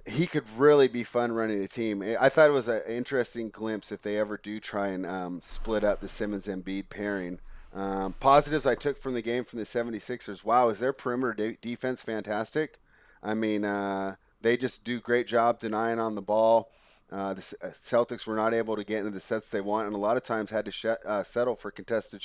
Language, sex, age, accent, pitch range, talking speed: English, male, 30-49, American, 100-120 Hz, 220 wpm